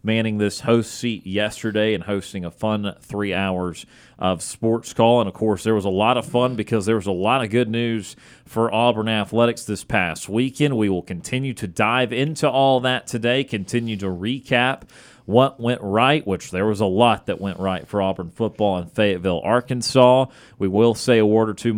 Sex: male